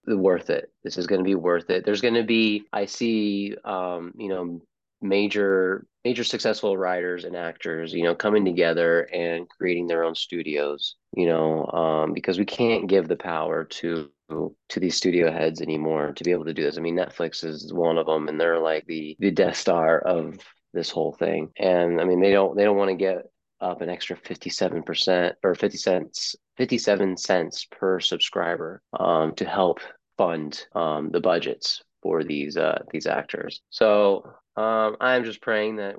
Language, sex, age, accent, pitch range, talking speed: English, male, 30-49, American, 80-100 Hz, 190 wpm